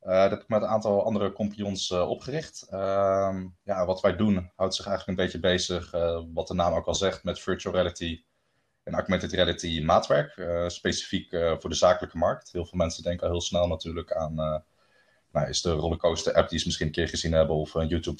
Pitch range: 80-95 Hz